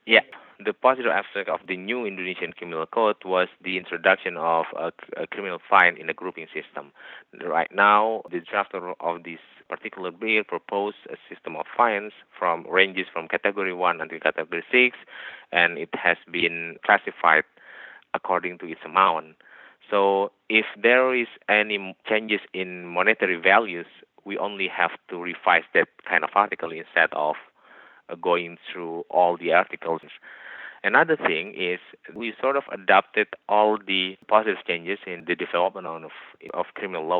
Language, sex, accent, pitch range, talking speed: English, male, Indonesian, 85-105 Hz, 155 wpm